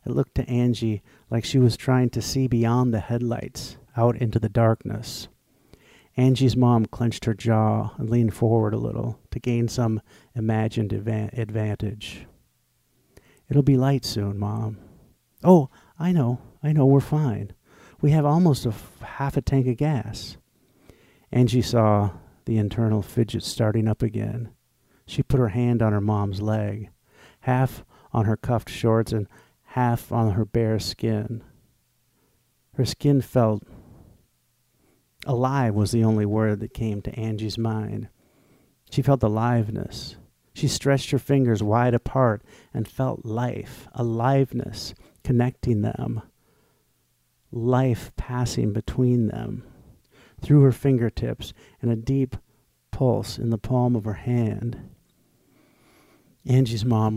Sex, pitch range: male, 110-125 Hz